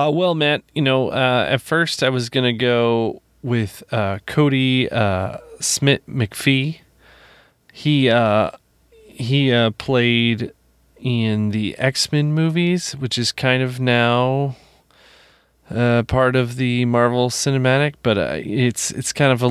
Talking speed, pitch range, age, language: 140 wpm, 110-130 Hz, 30-49, English